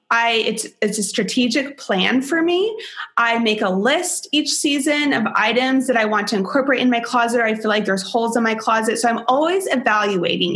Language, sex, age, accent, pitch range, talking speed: English, female, 20-39, American, 215-260 Hz, 210 wpm